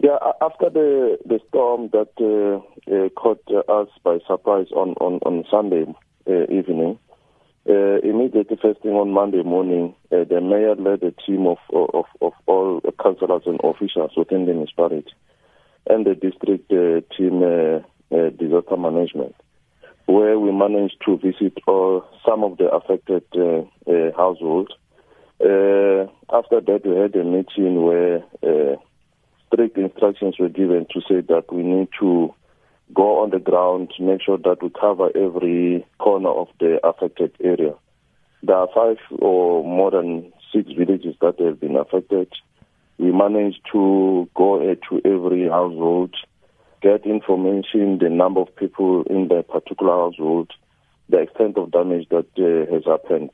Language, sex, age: English, male, 50-69